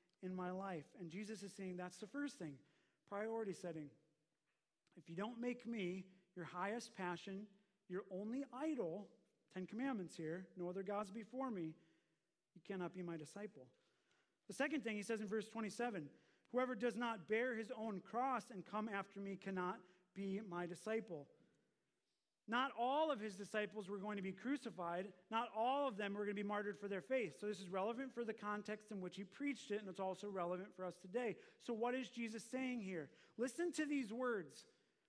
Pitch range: 180-235 Hz